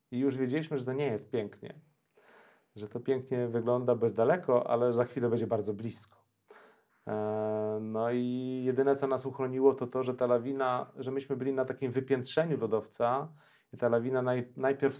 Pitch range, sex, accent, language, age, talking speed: 110-130 Hz, male, native, Polish, 30-49, 170 wpm